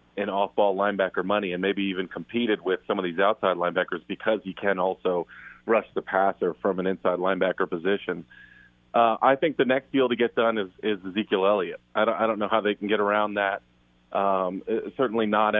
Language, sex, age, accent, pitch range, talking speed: English, male, 30-49, American, 95-110 Hz, 205 wpm